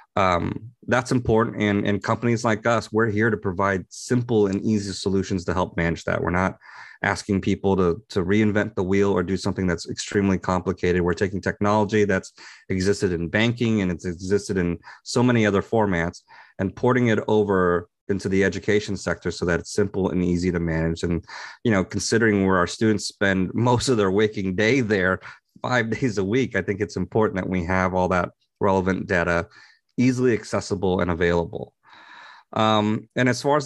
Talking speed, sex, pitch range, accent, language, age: 185 wpm, male, 95-115 Hz, American, English, 30-49